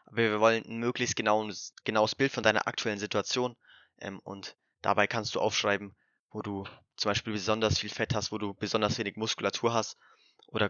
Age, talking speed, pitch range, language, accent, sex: 20-39, 180 wpm, 105-120 Hz, German, German, male